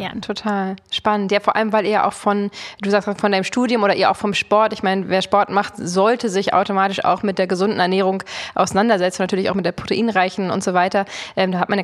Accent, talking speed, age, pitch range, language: German, 240 wpm, 20-39, 180-205 Hz, German